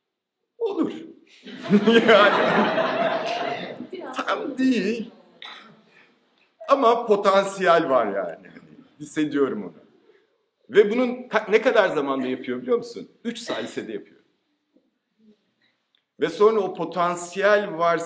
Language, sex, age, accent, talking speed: Turkish, male, 50-69, native, 85 wpm